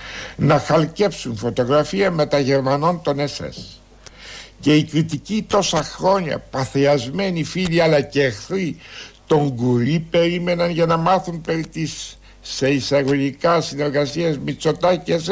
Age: 70-89